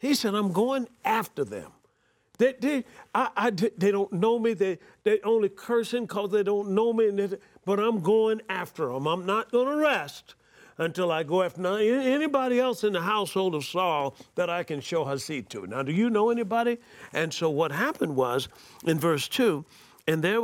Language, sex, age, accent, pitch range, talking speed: English, male, 50-69, American, 140-210 Hz, 195 wpm